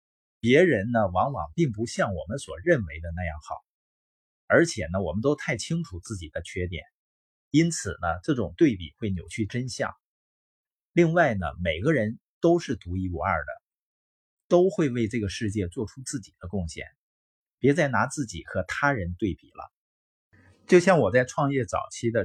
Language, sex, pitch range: Chinese, male, 95-150 Hz